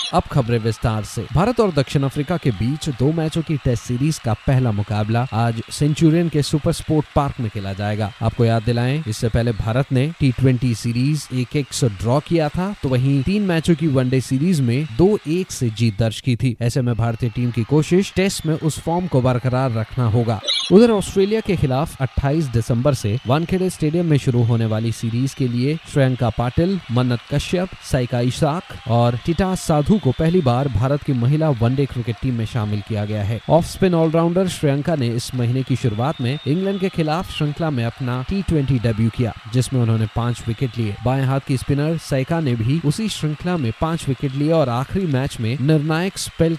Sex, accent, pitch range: male, native, 120-155 Hz